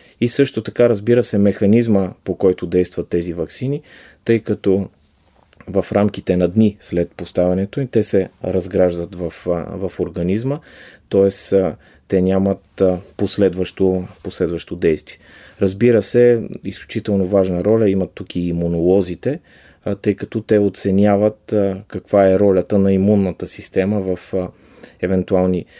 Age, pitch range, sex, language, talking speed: 30-49, 95-105 Hz, male, Bulgarian, 120 wpm